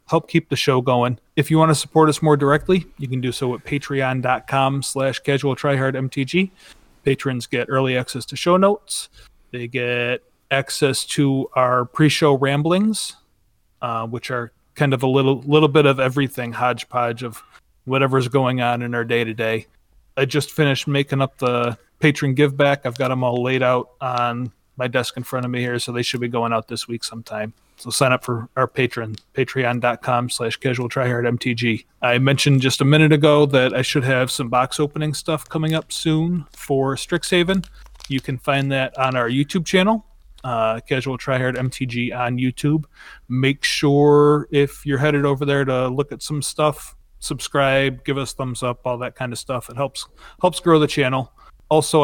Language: English